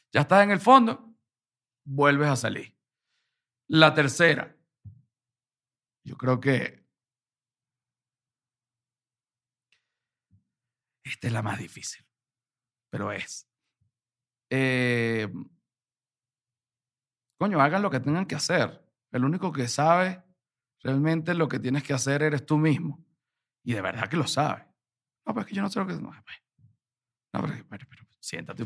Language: Spanish